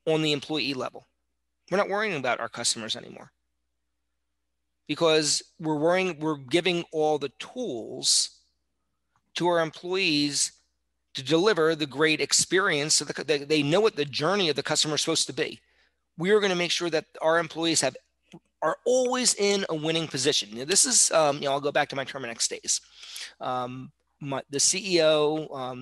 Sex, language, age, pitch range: male, English, 40-59, 110-155 Hz